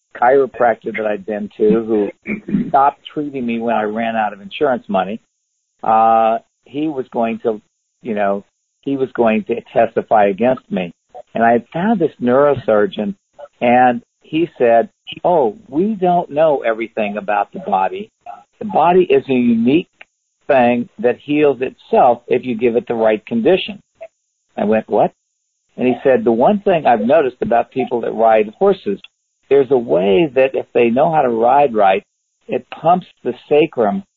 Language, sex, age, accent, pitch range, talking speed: English, male, 50-69, American, 110-155 Hz, 165 wpm